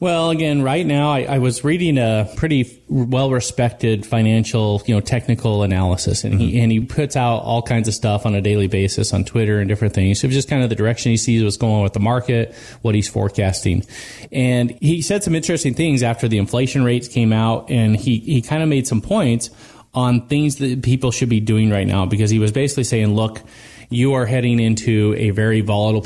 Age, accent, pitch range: 30-49, American, 110-130 Hz